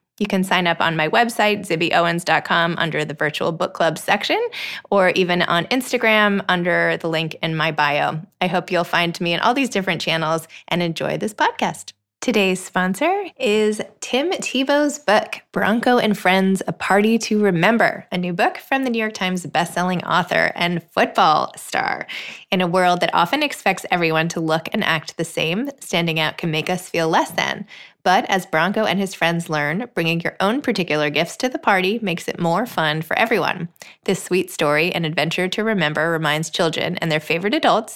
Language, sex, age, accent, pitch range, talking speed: English, female, 20-39, American, 165-210 Hz, 190 wpm